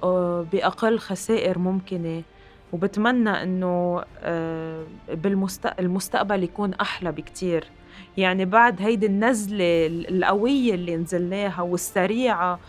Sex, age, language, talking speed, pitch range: female, 20-39, Arabic, 80 wpm, 190-255 Hz